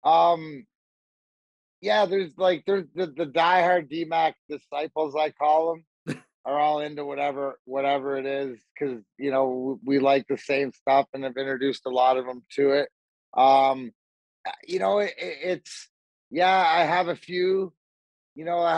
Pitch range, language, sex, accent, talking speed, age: 135-170 Hz, English, male, American, 165 wpm, 30-49